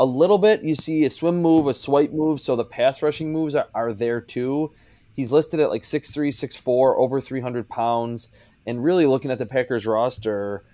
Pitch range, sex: 110-130 Hz, male